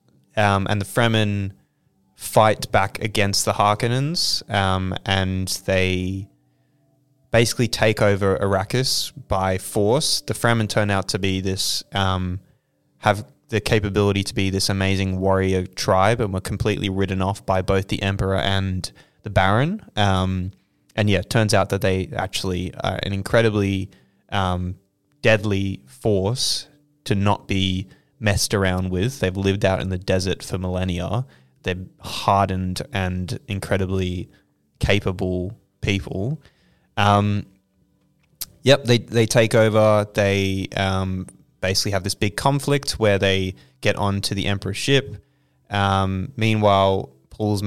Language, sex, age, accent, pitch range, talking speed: English, male, 20-39, Australian, 95-110 Hz, 130 wpm